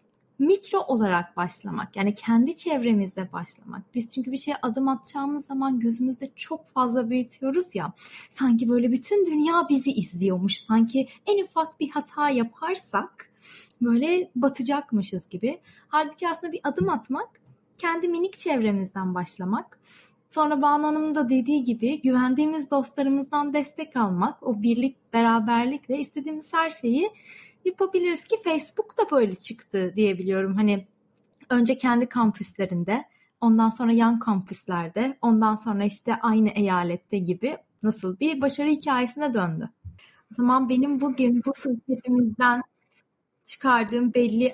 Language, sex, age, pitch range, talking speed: Turkish, female, 30-49, 215-285 Hz, 125 wpm